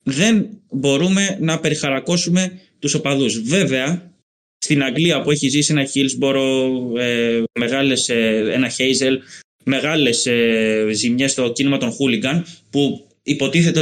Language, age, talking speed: Greek, 20-39, 105 wpm